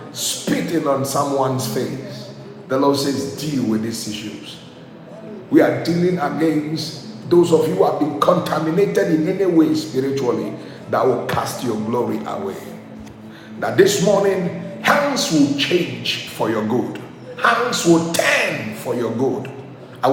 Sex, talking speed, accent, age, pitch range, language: male, 145 wpm, Nigerian, 50-69, 140-185 Hz, English